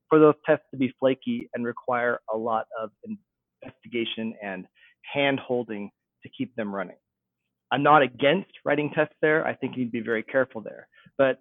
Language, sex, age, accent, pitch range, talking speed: English, male, 30-49, American, 130-160 Hz, 170 wpm